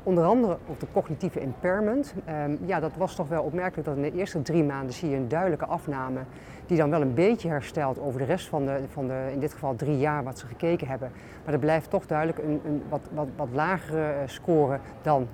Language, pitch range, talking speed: Dutch, 140-170 Hz, 225 wpm